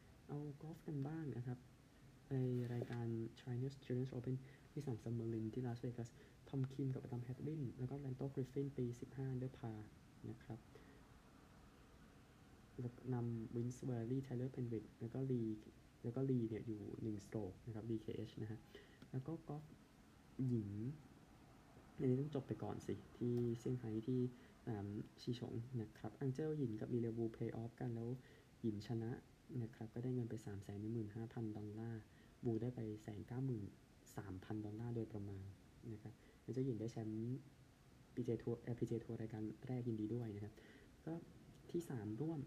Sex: male